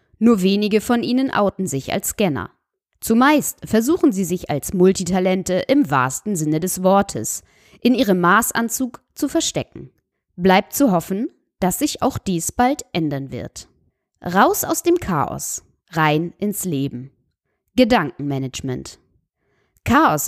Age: 20-39